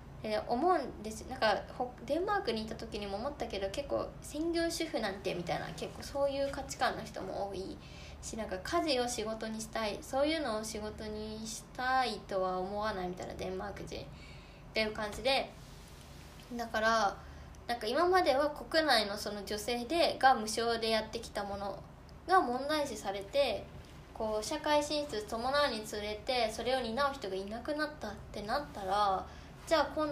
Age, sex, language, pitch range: 20-39, female, Japanese, 210-280 Hz